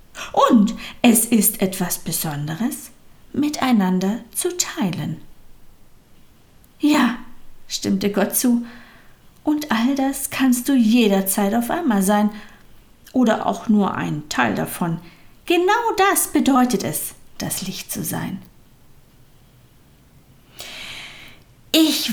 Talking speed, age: 100 wpm, 50-69